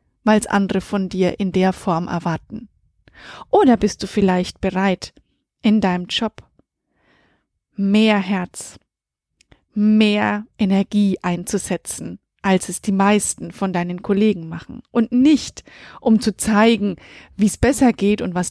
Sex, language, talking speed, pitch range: female, German, 130 wpm, 190-230 Hz